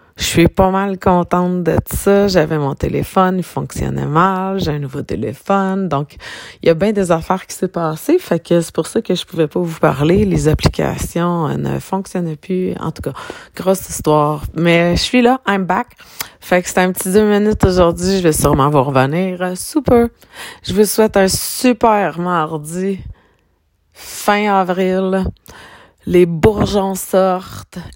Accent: Canadian